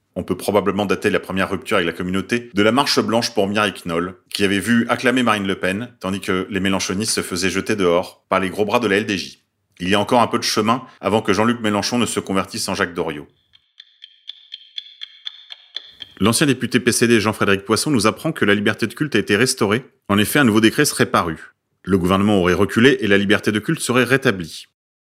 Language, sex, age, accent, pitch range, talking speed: French, male, 30-49, French, 95-125 Hz, 215 wpm